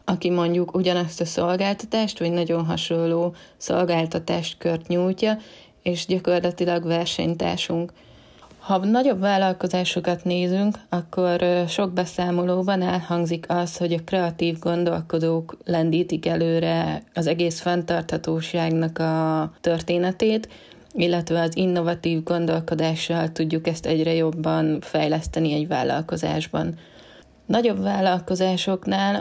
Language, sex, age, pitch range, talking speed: Hungarian, female, 20-39, 170-180 Hz, 95 wpm